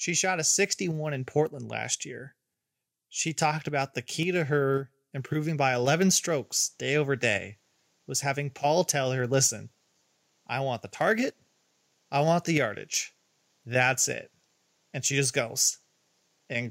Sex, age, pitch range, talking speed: male, 30-49, 125-155 Hz, 155 wpm